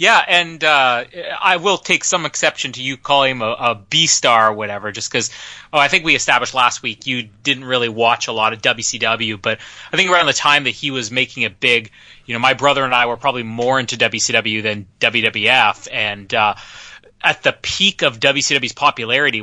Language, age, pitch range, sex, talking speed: English, 30-49, 115-140 Hz, male, 210 wpm